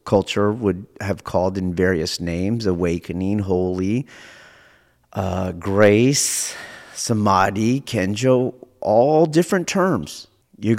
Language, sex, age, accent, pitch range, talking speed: English, male, 50-69, American, 95-120 Hz, 95 wpm